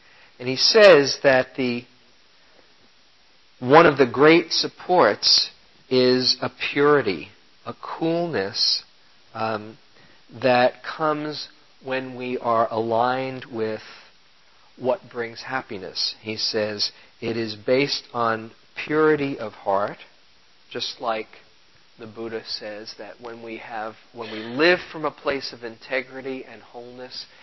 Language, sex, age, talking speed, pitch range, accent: English, male, 50-69, 120 wpm, 115-135 Hz, American